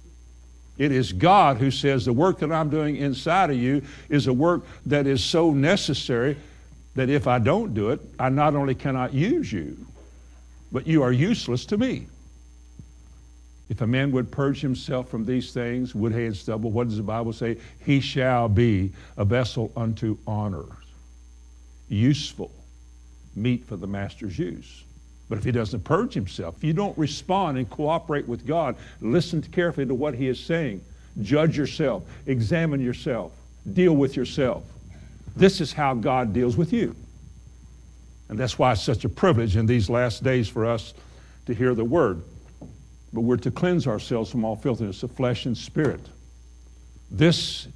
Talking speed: 170 wpm